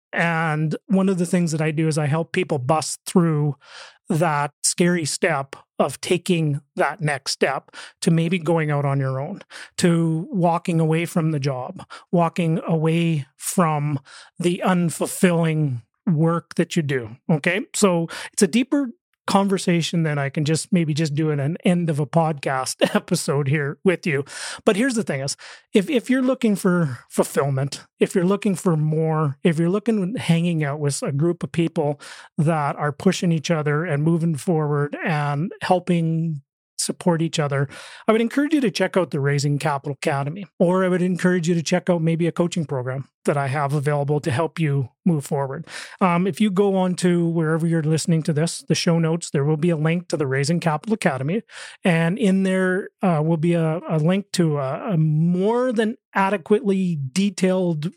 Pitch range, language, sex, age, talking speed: 155-185 Hz, English, male, 30-49, 185 wpm